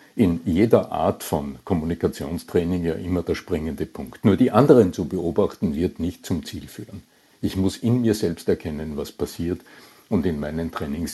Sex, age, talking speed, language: male, 60-79, 170 wpm, German